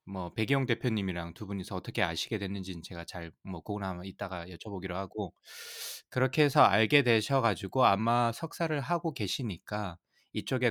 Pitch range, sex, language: 100-140 Hz, male, Korean